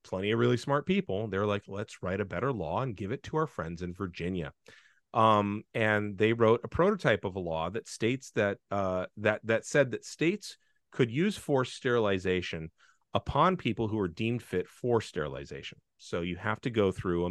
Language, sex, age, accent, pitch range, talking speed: English, male, 40-59, American, 95-125 Hz, 200 wpm